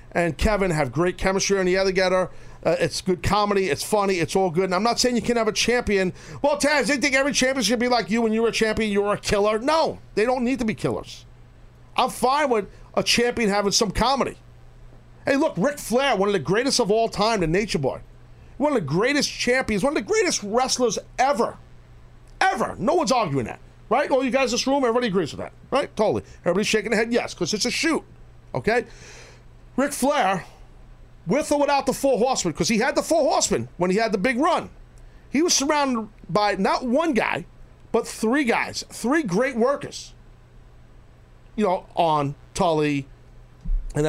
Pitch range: 160-245 Hz